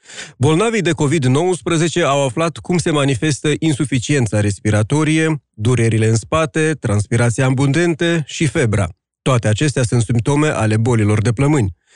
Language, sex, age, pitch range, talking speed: Romanian, male, 30-49, 115-155 Hz, 125 wpm